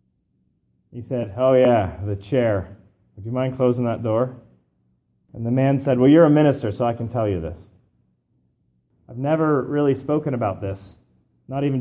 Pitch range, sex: 105-135 Hz, male